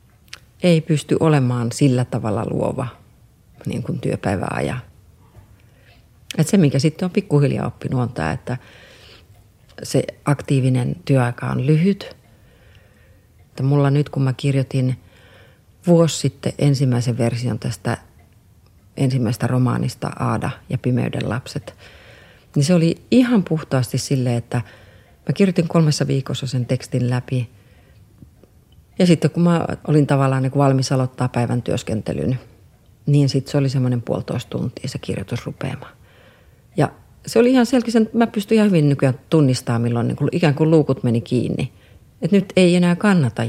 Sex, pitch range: female, 115-150 Hz